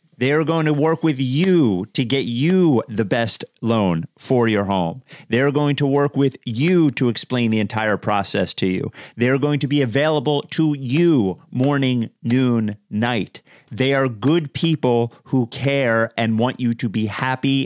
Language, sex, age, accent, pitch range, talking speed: English, male, 40-59, American, 110-150 Hz, 180 wpm